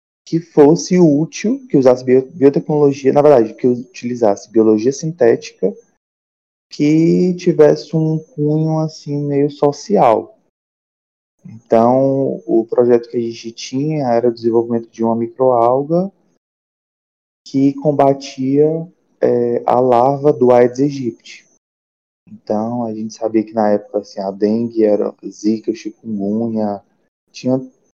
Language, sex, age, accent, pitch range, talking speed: Portuguese, male, 20-39, Brazilian, 110-145 Hz, 120 wpm